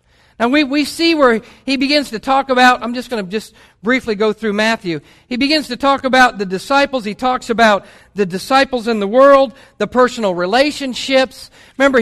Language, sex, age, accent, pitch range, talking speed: English, male, 50-69, American, 210-260 Hz, 190 wpm